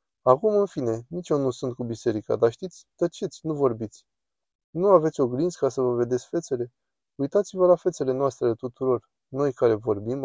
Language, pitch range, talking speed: Romanian, 120-155 Hz, 180 wpm